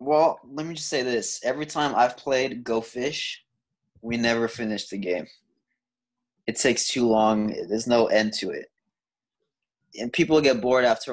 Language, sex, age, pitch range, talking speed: English, male, 20-39, 115-150 Hz, 165 wpm